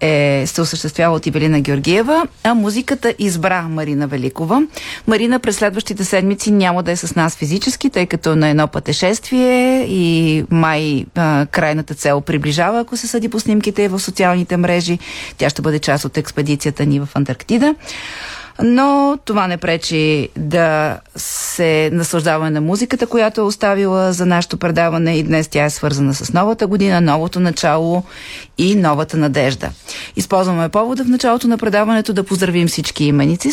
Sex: female